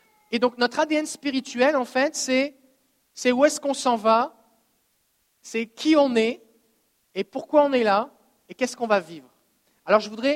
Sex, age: male, 40-59